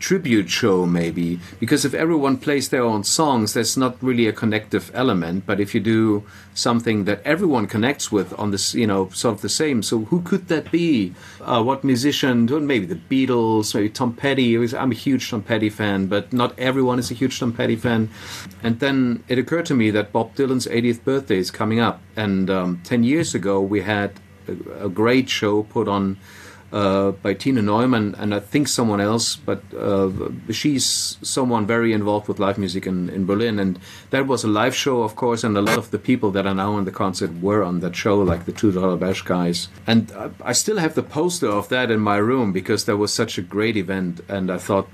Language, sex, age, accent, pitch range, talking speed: English, male, 40-59, German, 95-120 Hz, 215 wpm